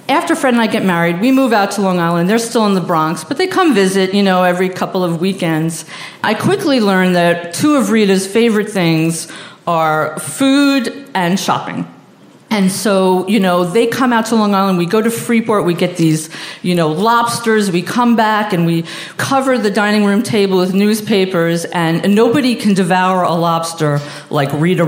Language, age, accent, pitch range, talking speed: English, 50-69, American, 170-230 Hz, 195 wpm